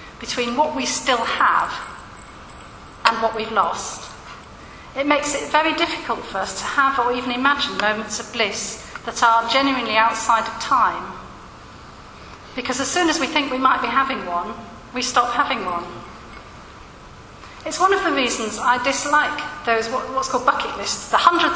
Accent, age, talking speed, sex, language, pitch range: British, 40-59, 165 wpm, female, English, 230-290 Hz